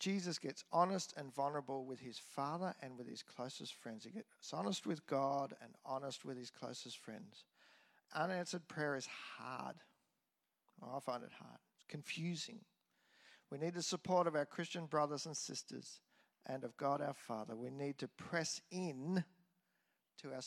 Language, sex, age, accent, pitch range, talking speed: English, male, 50-69, Australian, 140-205 Hz, 165 wpm